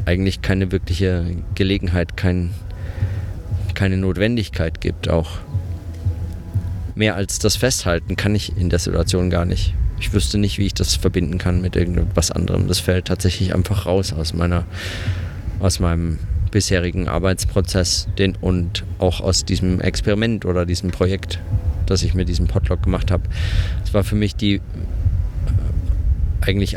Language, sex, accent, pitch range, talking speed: German, male, German, 90-100 Hz, 140 wpm